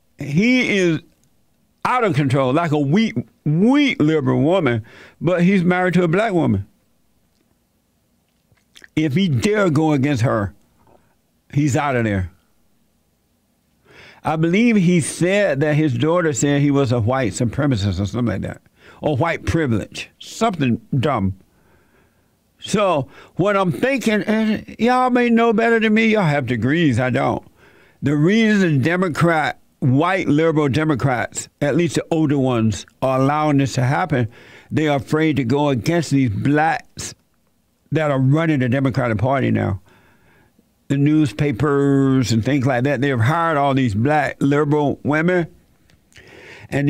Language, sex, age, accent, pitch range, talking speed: English, male, 60-79, American, 130-170 Hz, 140 wpm